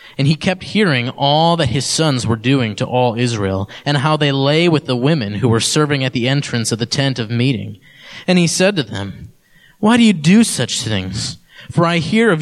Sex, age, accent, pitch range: male, 20-39, American, 115-155 Hz